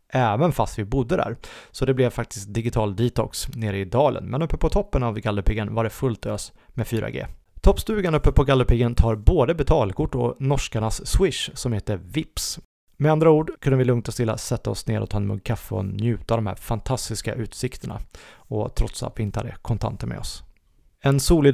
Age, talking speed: 30-49, 205 wpm